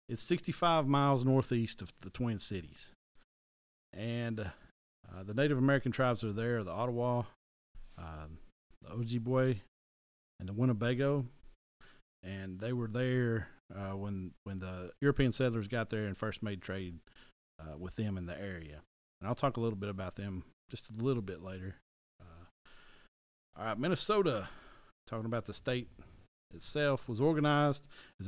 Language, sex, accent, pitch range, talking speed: English, male, American, 95-125 Hz, 145 wpm